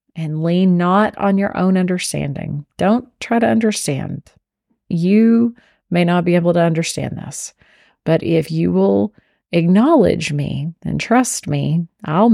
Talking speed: 140 wpm